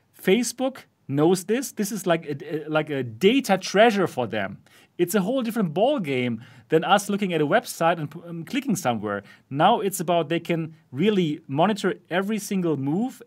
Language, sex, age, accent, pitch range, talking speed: English, male, 40-59, German, 150-200 Hz, 185 wpm